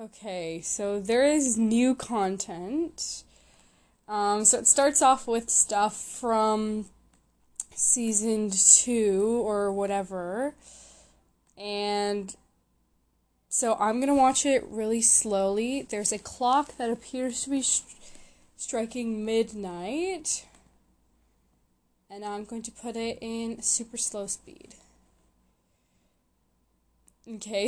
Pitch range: 200-240 Hz